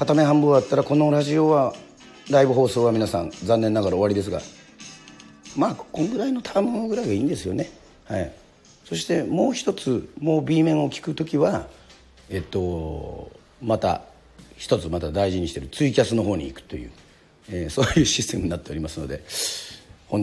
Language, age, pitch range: Japanese, 40-59, 85-120 Hz